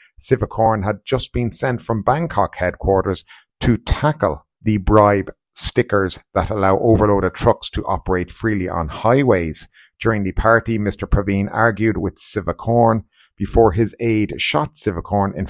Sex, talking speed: male, 140 wpm